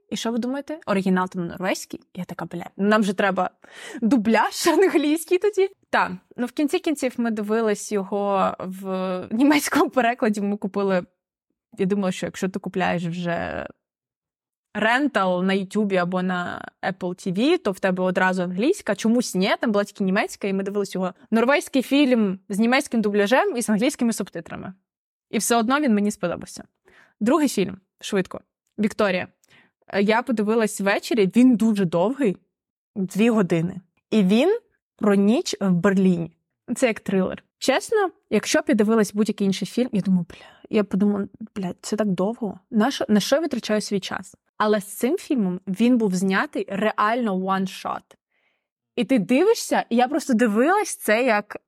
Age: 20-39